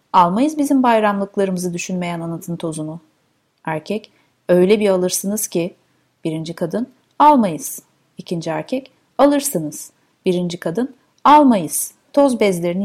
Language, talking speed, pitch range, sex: Turkish, 105 wpm, 180-255 Hz, female